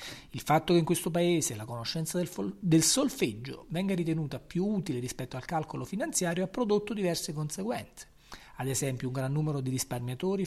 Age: 40-59